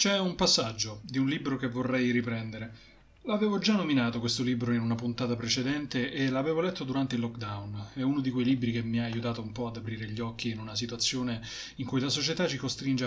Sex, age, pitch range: male, 20-39, 115-150 Hz